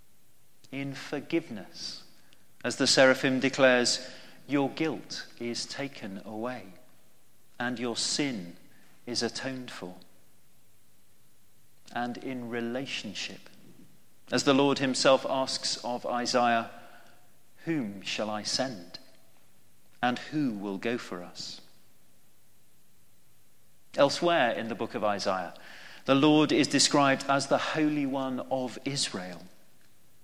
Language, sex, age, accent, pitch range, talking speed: English, male, 40-59, British, 110-135 Hz, 105 wpm